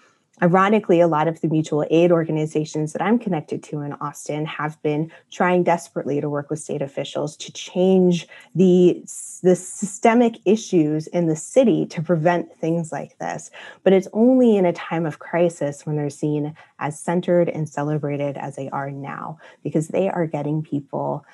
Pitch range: 155-195 Hz